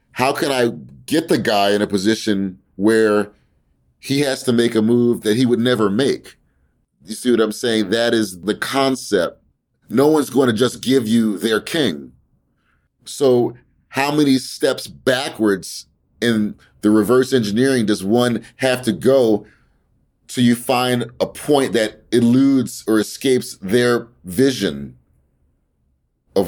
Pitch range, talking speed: 105-125 Hz, 145 wpm